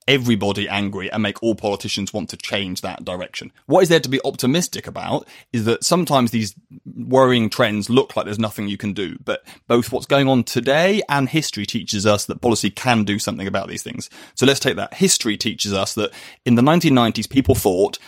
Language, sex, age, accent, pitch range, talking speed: English, male, 30-49, British, 100-125 Hz, 205 wpm